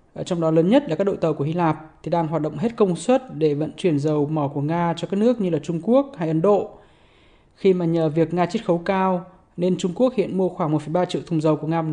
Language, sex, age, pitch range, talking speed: Vietnamese, male, 20-39, 165-200 Hz, 280 wpm